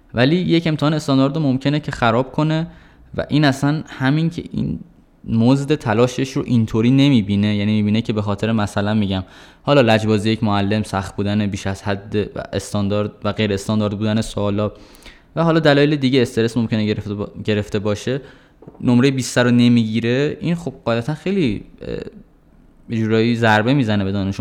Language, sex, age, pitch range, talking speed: Persian, male, 20-39, 100-140 Hz, 155 wpm